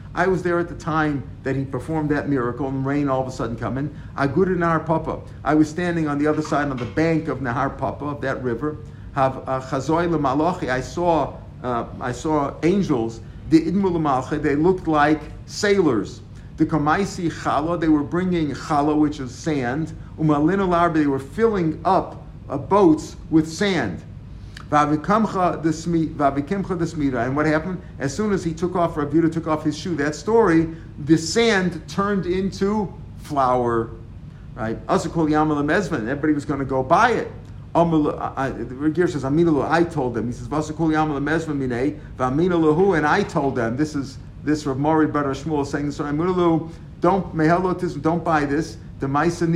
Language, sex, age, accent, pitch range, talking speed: English, male, 50-69, American, 140-170 Hz, 140 wpm